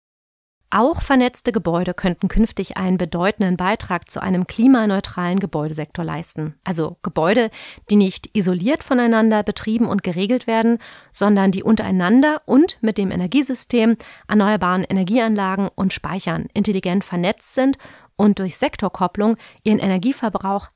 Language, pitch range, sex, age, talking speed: German, 185-230 Hz, female, 30-49, 120 wpm